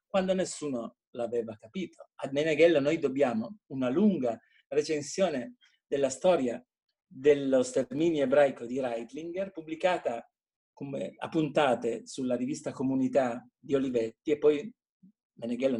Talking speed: 115 wpm